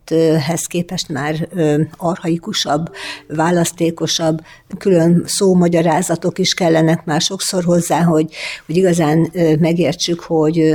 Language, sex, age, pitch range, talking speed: Hungarian, female, 60-79, 155-180 Hz, 95 wpm